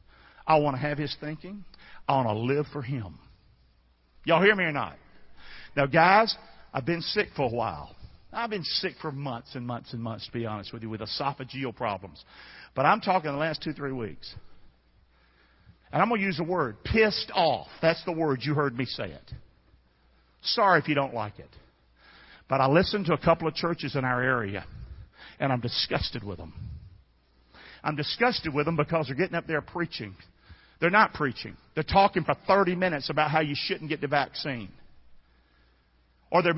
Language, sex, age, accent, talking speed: English, male, 50-69, American, 190 wpm